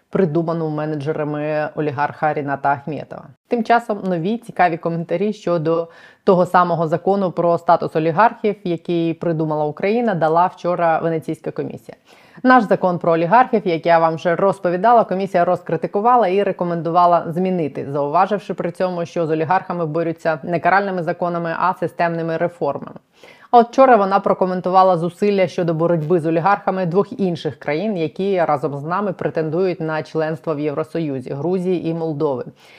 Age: 20-39